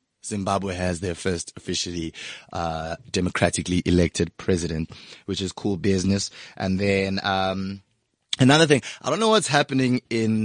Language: English